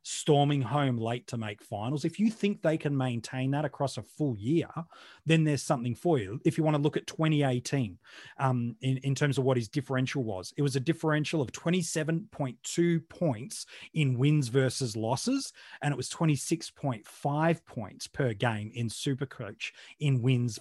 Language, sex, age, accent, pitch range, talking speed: English, male, 30-49, Australian, 125-155 Hz, 175 wpm